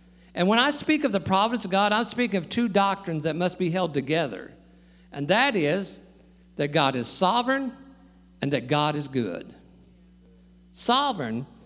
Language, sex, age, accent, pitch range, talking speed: English, male, 50-69, American, 130-215 Hz, 165 wpm